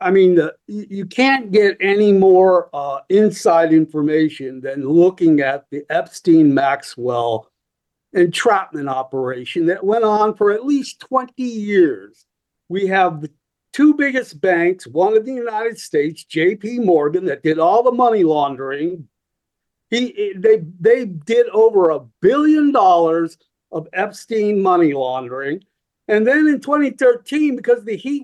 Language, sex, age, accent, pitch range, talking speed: English, male, 50-69, American, 170-250 Hz, 140 wpm